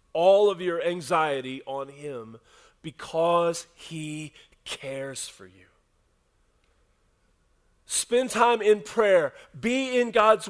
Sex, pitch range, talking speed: male, 130-210 Hz, 105 wpm